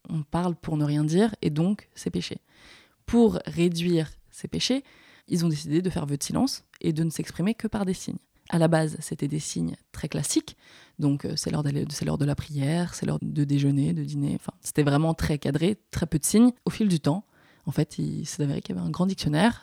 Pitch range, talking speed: 150-185 Hz, 230 wpm